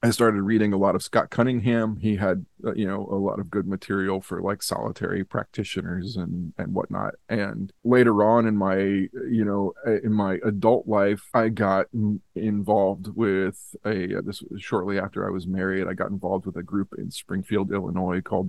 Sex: male